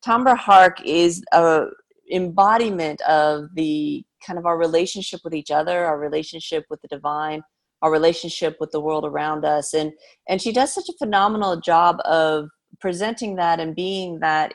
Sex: female